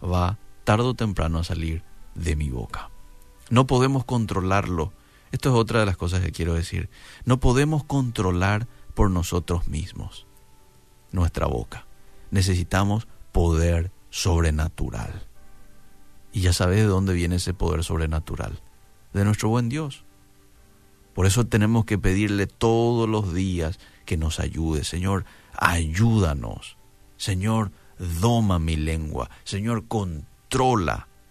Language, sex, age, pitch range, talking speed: Spanish, male, 50-69, 85-110 Hz, 125 wpm